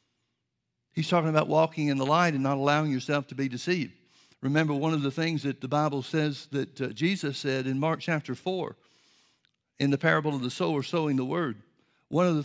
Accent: American